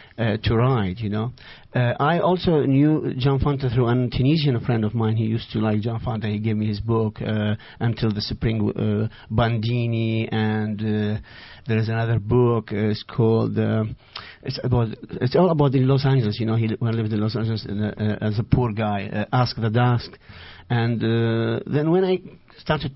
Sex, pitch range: male, 110-135 Hz